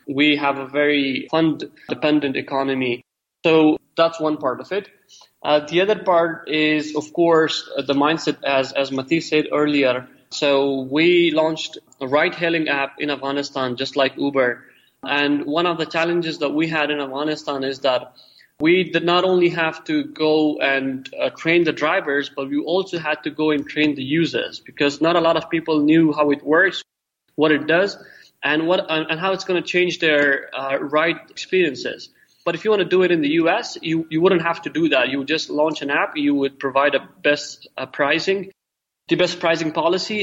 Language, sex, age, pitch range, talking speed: English, male, 20-39, 140-165 Hz, 195 wpm